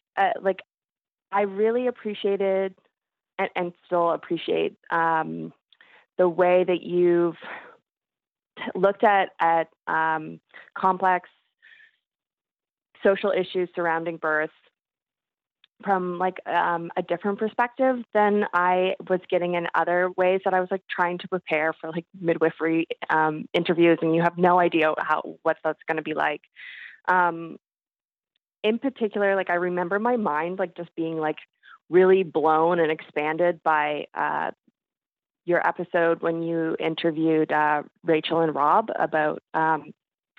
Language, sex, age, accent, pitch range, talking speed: English, female, 20-39, American, 160-185 Hz, 130 wpm